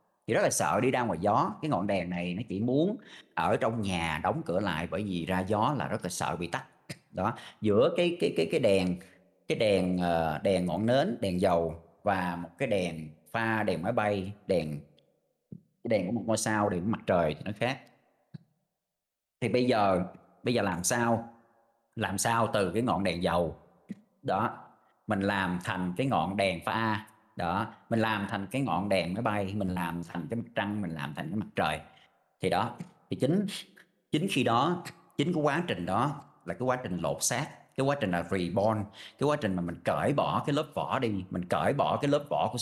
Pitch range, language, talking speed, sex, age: 90-115 Hz, Vietnamese, 215 wpm, male, 30-49